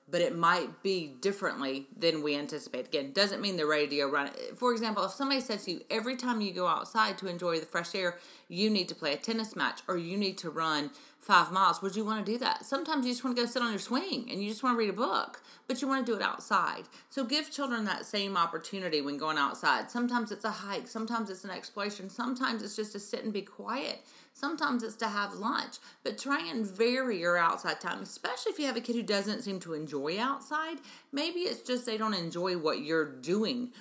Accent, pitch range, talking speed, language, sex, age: American, 155-240 Hz, 240 wpm, English, female, 30-49